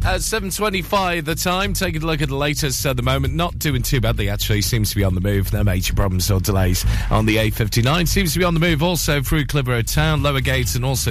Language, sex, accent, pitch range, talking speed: English, male, British, 100-140 Hz, 255 wpm